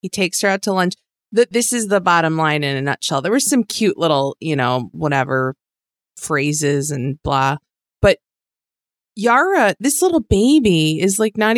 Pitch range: 165-220 Hz